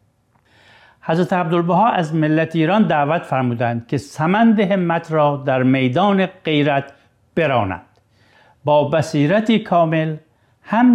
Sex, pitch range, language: male, 120-170 Hz, Persian